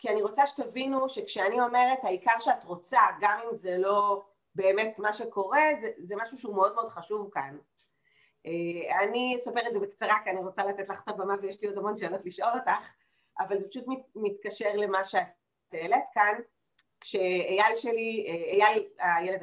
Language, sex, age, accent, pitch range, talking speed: Hebrew, female, 30-49, native, 190-245 Hz, 175 wpm